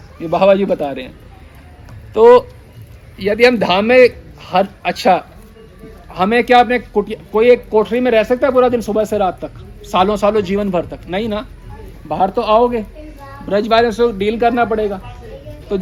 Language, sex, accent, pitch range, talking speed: Hindi, male, native, 190-245 Hz, 175 wpm